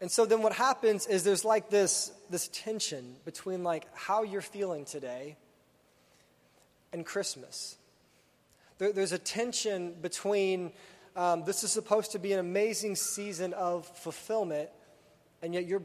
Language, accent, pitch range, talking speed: English, American, 170-205 Hz, 145 wpm